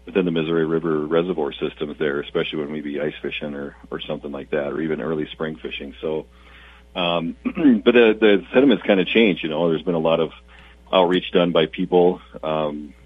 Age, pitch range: 40-59, 70-90 Hz